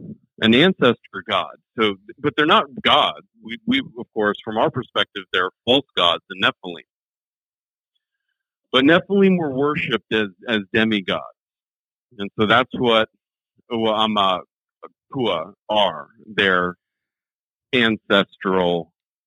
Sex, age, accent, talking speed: male, 50-69, American, 110 wpm